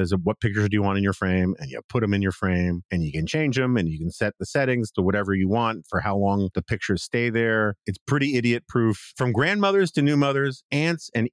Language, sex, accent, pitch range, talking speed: English, male, American, 100-145 Hz, 260 wpm